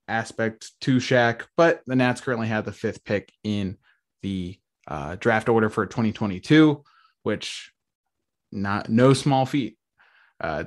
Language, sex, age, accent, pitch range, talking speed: English, male, 20-39, American, 105-125 Hz, 135 wpm